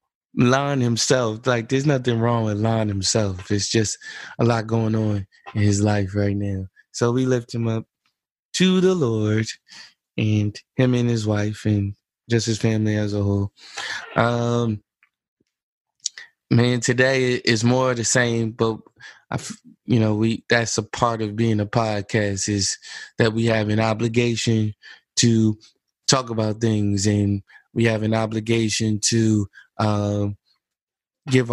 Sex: male